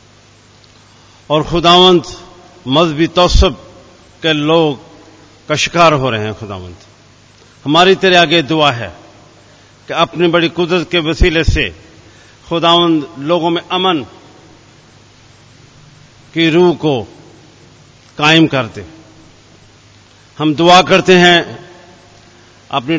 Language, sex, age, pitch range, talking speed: Hindi, male, 50-69, 115-170 Hz, 95 wpm